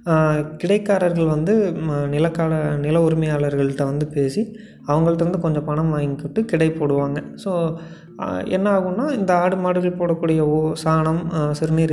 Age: 20-39